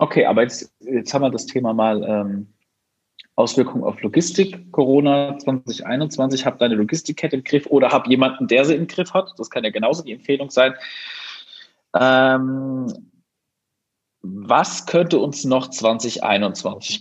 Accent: German